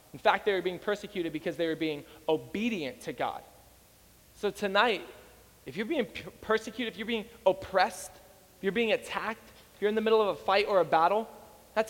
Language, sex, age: English, male, 20-39